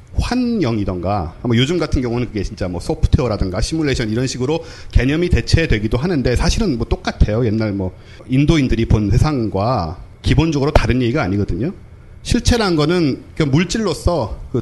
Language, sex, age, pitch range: Korean, male, 40-59, 105-150 Hz